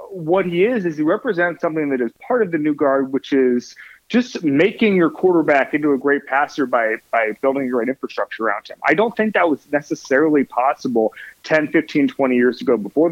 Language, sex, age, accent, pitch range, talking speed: English, male, 30-49, American, 120-150 Hz, 205 wpm